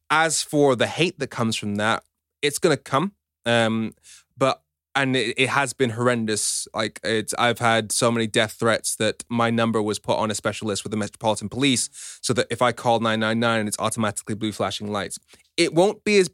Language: English